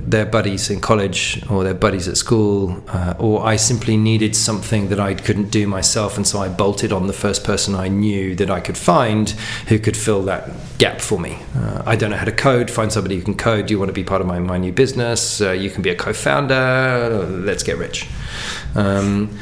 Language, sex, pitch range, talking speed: English, male, 100-115 Hz, 230 wpm